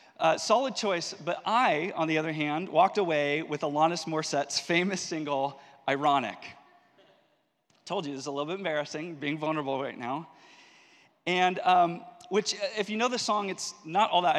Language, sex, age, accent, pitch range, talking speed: English, male, 30-49, American, 145-185 Hz, 170 wpm